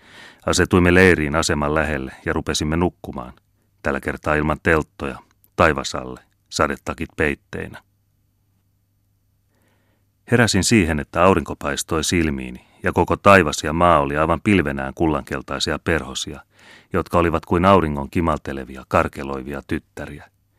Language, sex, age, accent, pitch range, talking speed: Finnish, male, 30-49, native, 75-100 Hz, 110 wpm